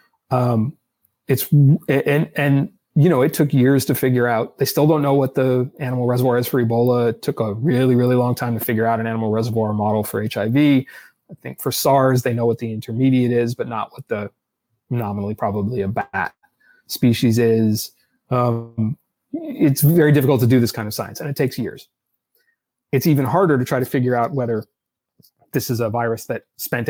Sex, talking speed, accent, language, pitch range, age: male, 195 wpm, American, English, 115-135 Hz, 30-49